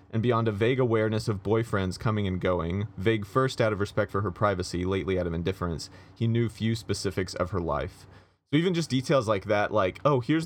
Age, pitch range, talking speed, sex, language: 30-49, 90-110 Hz, 220 wpm, male, English